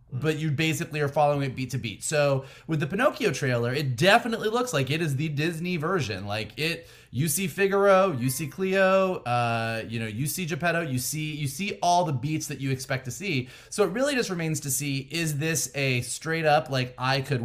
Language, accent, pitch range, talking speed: English, American, 125-165 Hz, 215 wpm